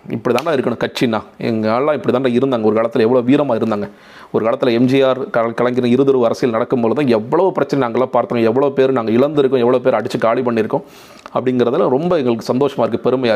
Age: 30-49